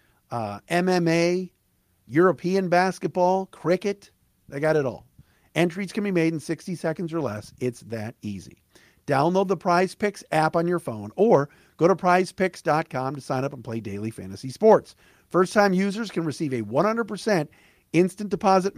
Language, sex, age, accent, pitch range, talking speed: English, male, 50-69, American, 115-190 Hz, 155 wpm